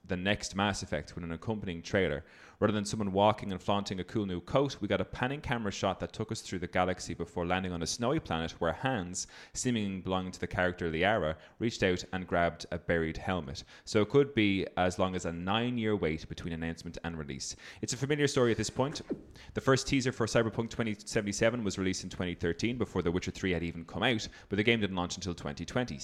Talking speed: 225 wpm